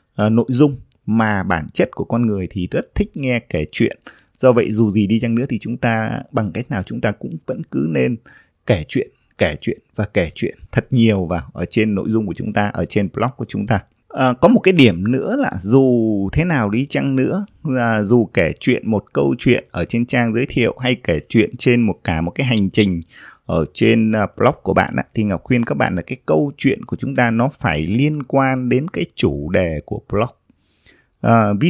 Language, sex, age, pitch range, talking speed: Vietnamese, male, 20-39, 100-125 Hz, 220 wpm